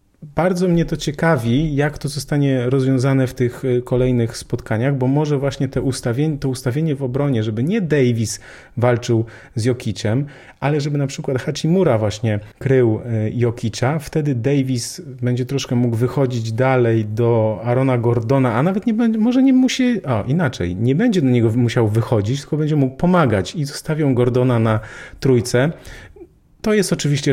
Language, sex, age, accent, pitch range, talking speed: Polish, male, 40-59, native, 115-140 Hz, 160 wpm